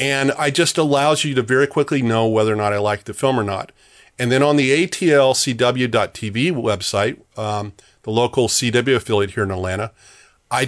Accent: American